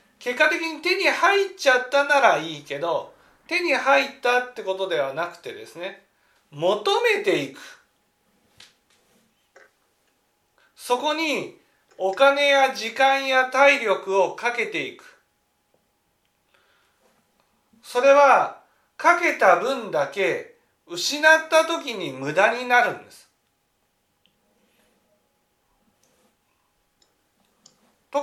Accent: native